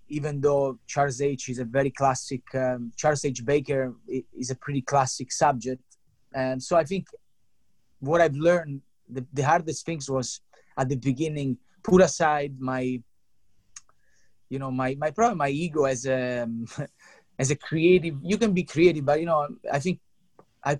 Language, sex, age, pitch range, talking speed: English, male, 30-49, 130-150 Hz, 160 wpm